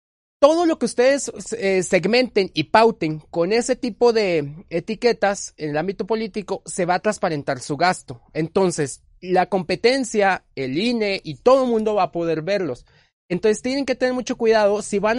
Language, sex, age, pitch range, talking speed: Spanish, male, 30-49, 180-235 Hz, 175 wpm